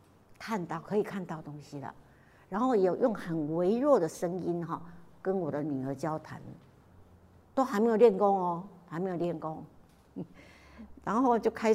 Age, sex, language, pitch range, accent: 60-79, female, Chinese, 150-200 Hz, American